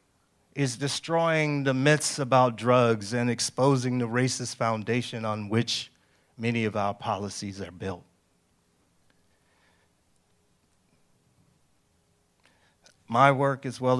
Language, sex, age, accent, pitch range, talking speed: English, male, 40-59, American, 105-130 Hz, 100 wpm